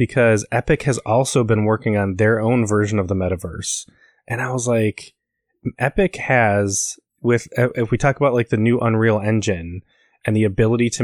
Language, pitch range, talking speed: English, 105-125 Hz, 180 wpm